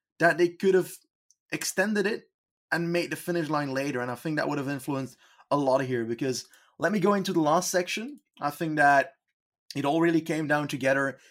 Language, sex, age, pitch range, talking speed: English, male, 20-39, 135-170 Hz, 210 wpm